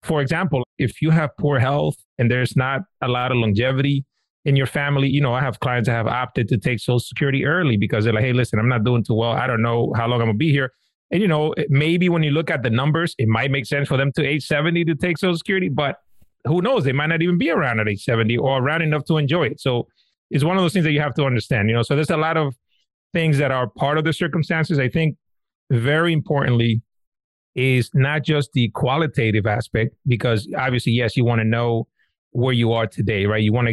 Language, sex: English, male